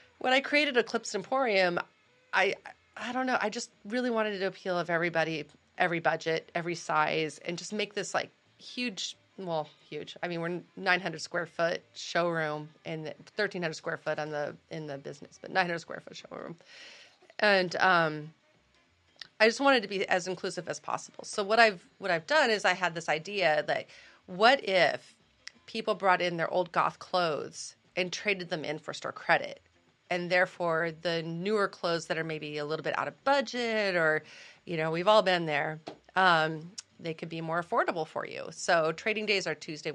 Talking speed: 185 wpm